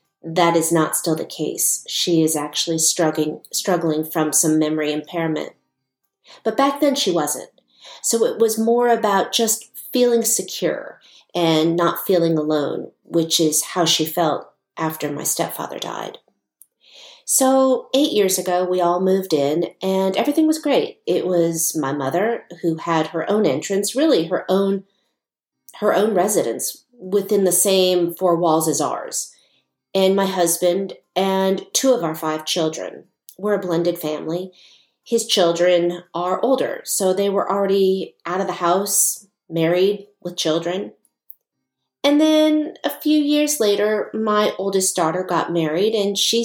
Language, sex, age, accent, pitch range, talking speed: English, female, 40-59, American, 165-215 Hz, 150 wpm